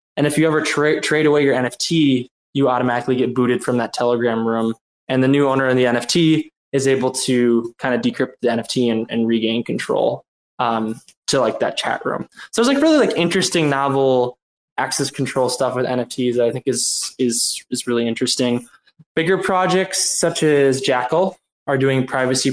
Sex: male